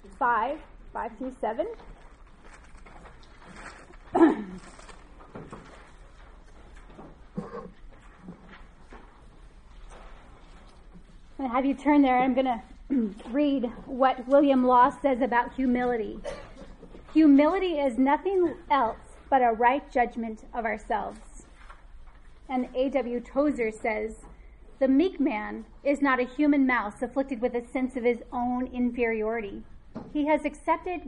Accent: American